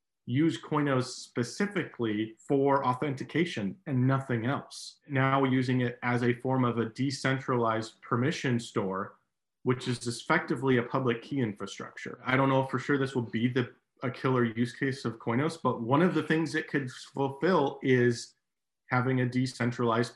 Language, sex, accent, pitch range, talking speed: English, male, American, 120-140 Hz, 160 wpm